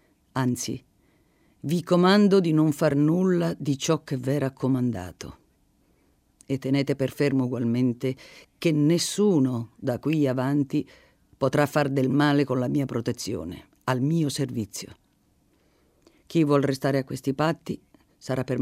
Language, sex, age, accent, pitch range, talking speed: Italian, female, 50-69, native, 115-150 Hz, 130 wpm